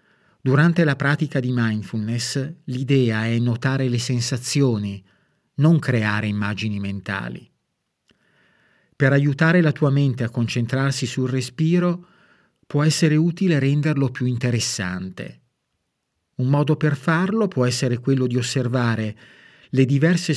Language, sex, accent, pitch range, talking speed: Italian, male, native, 120-155 Hz, 120 wpm